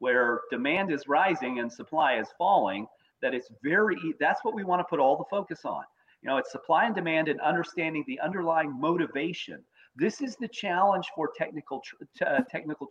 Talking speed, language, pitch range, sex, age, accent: 180 wpm, English, 145-230 Hz, male, 40-59, American